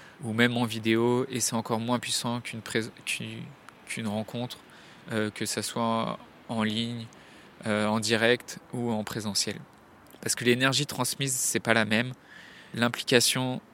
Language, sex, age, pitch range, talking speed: French, male, 20-39, 115-130 Hz, 155 wpm